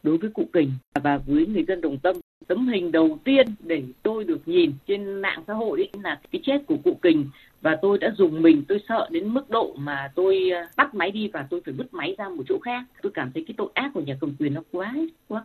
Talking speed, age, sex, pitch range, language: 255 wpm, 20-39, female, 160-265 Hz, Vietnamese